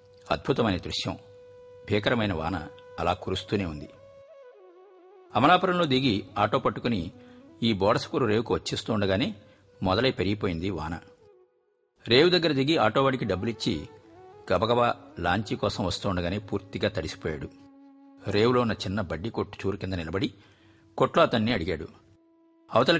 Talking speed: 105 wpm